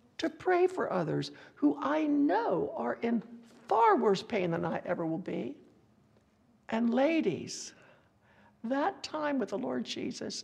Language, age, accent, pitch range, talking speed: English, 60-79, American, 190-270 Hz, 145 wpm